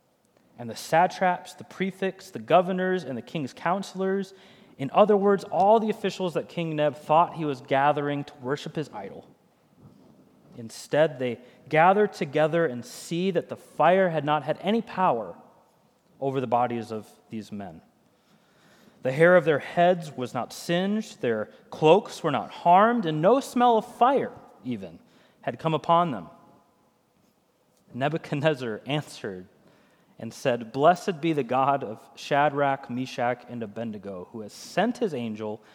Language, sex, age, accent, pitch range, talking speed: English, male, 30-49, American, 120-185 Hz, 150 wpm